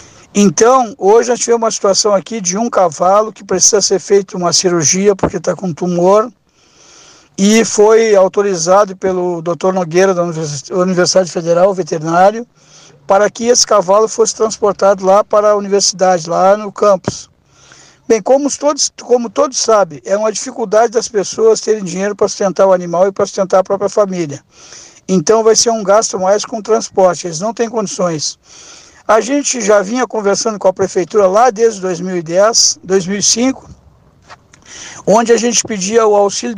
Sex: male